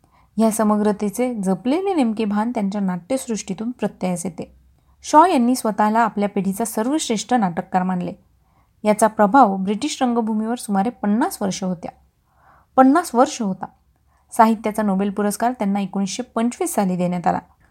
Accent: native